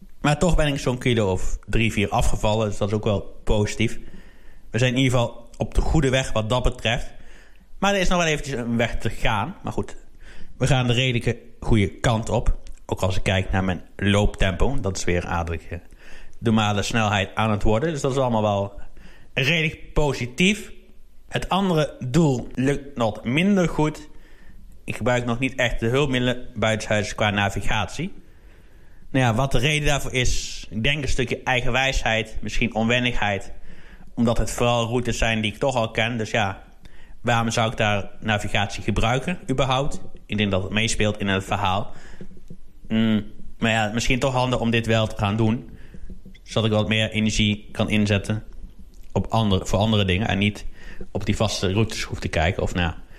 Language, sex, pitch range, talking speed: Dutch, male, 100-125 Hz, 185 wpm